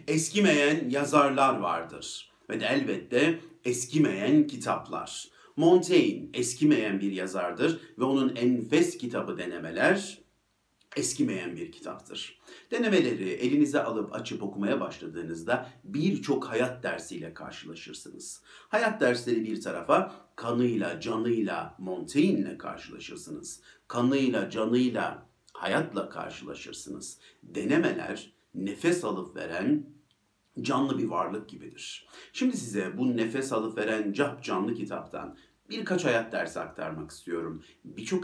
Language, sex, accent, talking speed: Turkish, male, native, 105 wpm